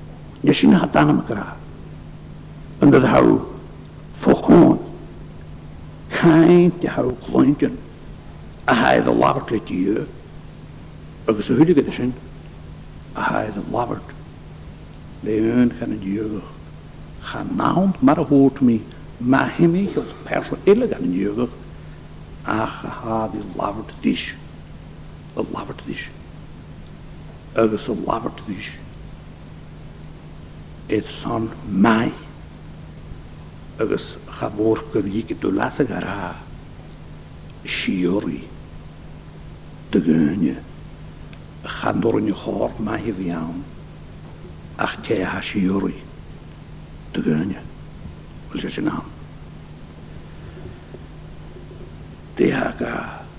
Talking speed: 50 wpm